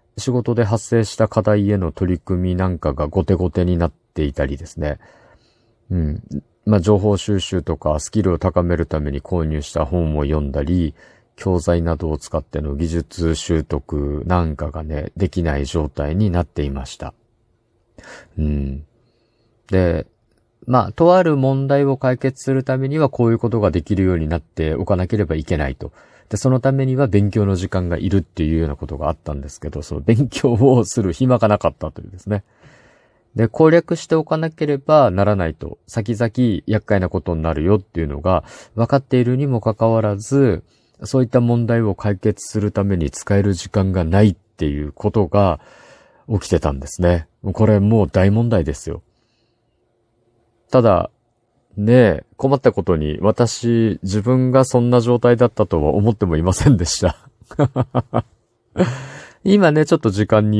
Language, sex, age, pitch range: Japanese, male, 50-69, 85-115 Hz